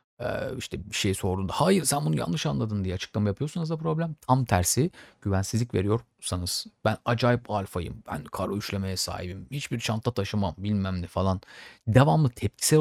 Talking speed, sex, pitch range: 155 wpm, male, 95-125 Hz